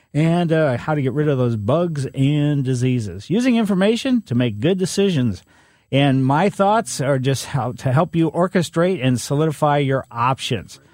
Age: 50-69